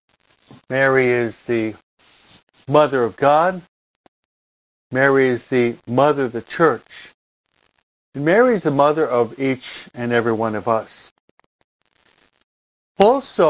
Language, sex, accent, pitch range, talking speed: English, male, American, 120-145 Hz, 115 wpm